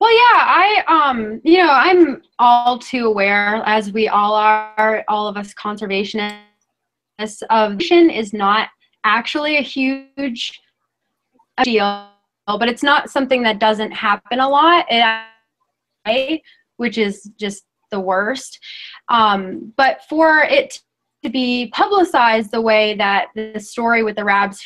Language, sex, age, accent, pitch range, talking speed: English, female, 20-39, American, 210-255 Hz, 130 wpm